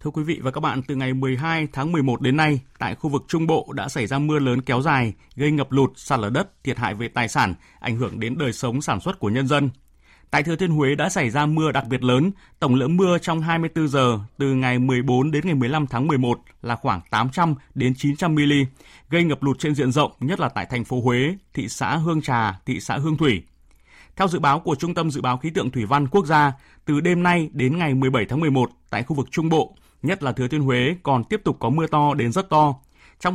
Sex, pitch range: male, 125-160 Hz